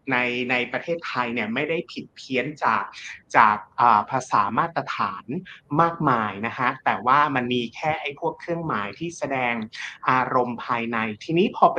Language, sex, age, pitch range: Thai, male, 30-49, 120-150 Hz